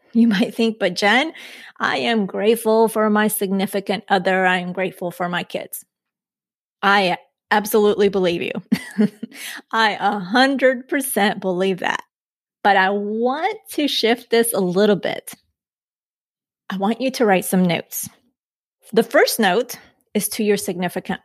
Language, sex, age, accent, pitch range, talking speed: English, female, 30-49, American, 190-230 Hz, 140 wpm